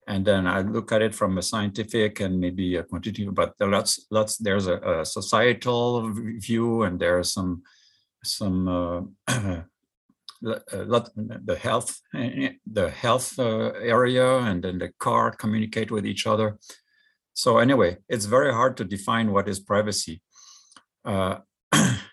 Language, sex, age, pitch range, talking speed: English, male, 50-69, 95-115 Hz, 135 wpm